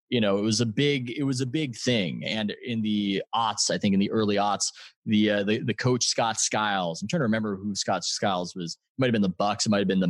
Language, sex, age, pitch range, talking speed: English, male, 20-39, 100-130 Hz, 265 wpm